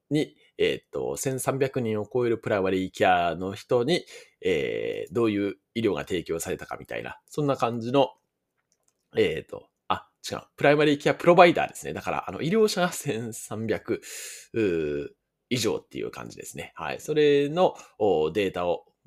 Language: Japanese